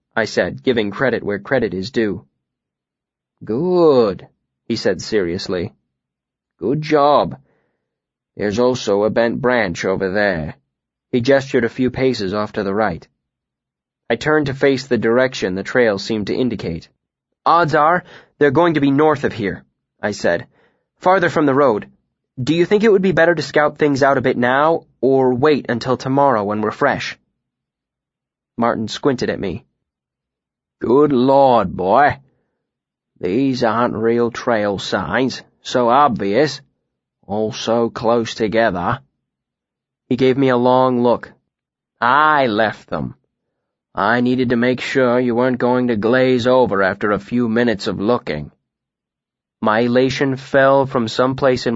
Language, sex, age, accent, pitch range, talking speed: English, male, 20-39, American, 115-135 Hz, 150 wpm